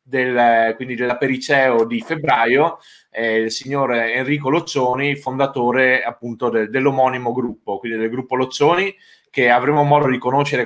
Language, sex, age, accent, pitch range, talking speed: Italian, male, 20-39, native, 115-140 Hz, 140 wpm